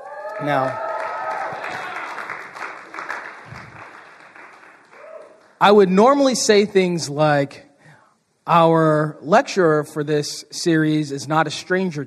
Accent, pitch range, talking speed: American, 160-215 Hz, 80 wpm